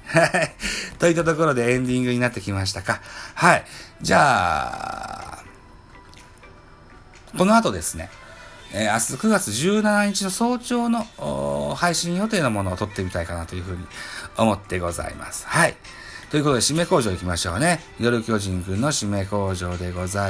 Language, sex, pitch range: Japanese, male, 100-155 Hz